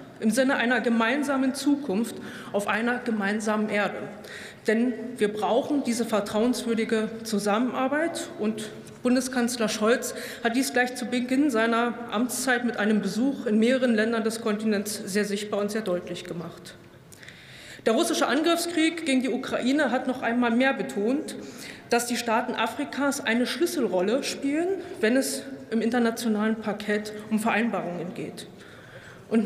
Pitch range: 215-260 Hz